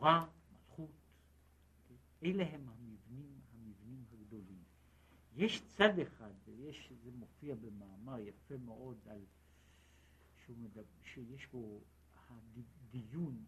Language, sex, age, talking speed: Hebrew, male, 60-79, 80 wpm